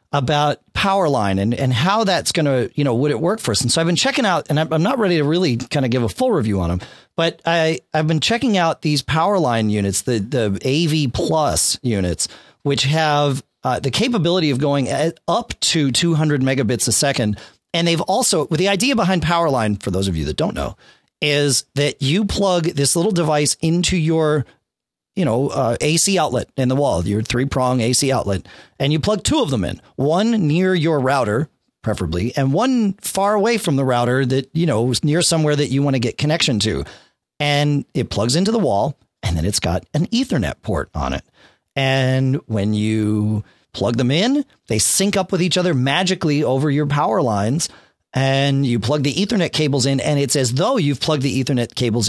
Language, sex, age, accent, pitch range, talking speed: English, male, 40-59, American, 120-170 Hz, 205 wpm